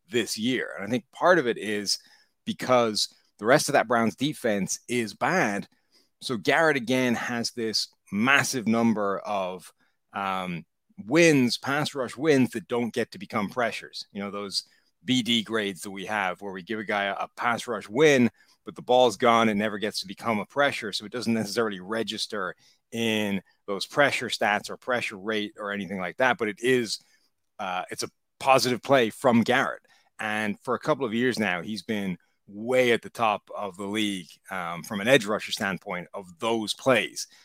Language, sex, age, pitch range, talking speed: English, male, 30-49, 100-120 Hz, 185 wpm